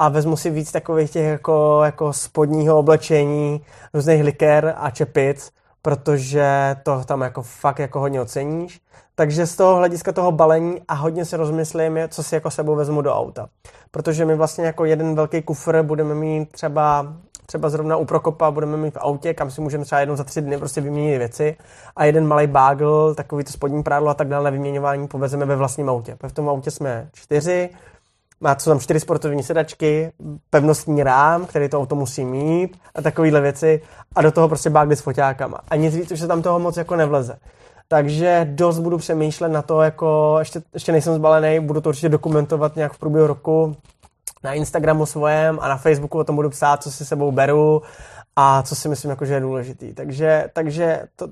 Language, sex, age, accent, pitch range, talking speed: Czech, male, 20-39, native, 145-160 Hz, 195 wpm